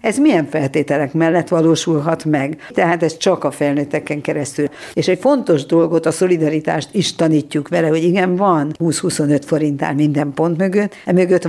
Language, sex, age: Hungarian, female, 60-79